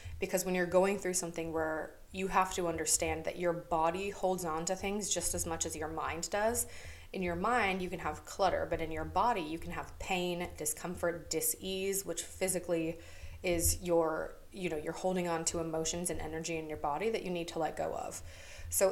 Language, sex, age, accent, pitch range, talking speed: English, female, 20-39, American, 155-185 Hz, 210 wpm